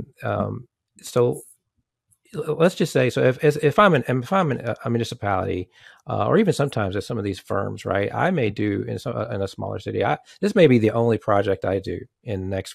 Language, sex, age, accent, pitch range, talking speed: English, male, 40-59, American, 105-125 Hz, 215 wpm